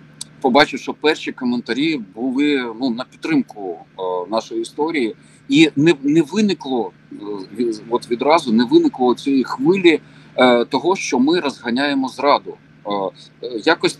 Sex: male